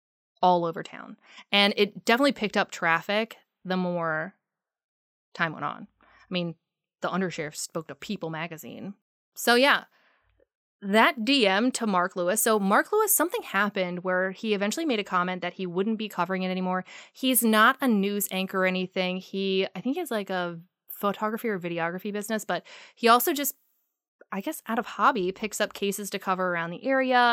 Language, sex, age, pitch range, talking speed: English, female, 20-39, 175-210 Hz, 180 wpm